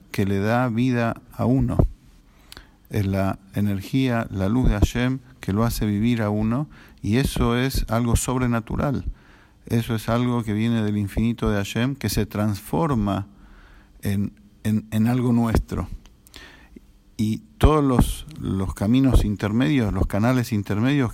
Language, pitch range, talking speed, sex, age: English, 100-120 Hz, 140 wpm, male, 50-69